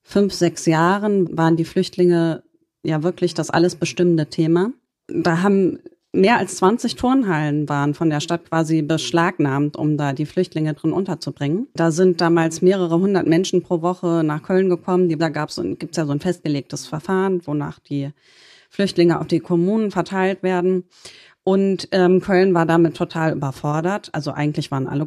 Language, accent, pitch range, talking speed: German, German, 155-185 Hz, 165 wpm